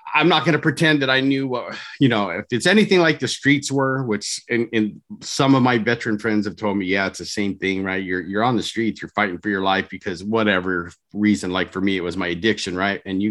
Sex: male